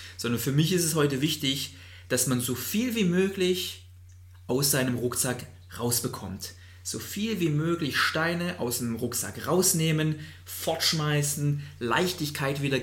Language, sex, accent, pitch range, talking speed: German, male, German, 105-140 Hz, 135 wpm